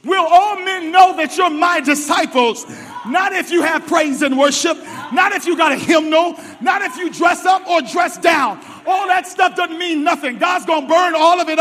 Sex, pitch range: male, 315-370 Hz